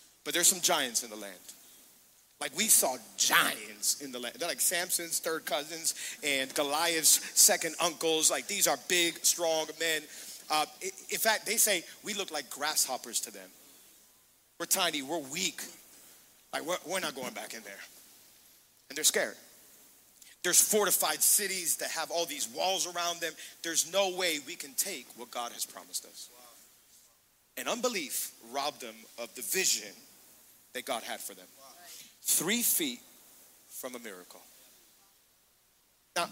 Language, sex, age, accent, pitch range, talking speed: English, male, 40-59, American, 160-230 Hz, 155 wpm